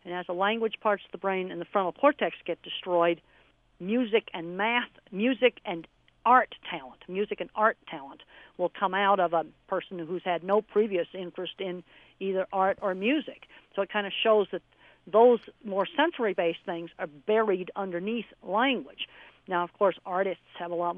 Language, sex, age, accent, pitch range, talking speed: English, female, 50-69, American, 175-225 Hz, 175 wpm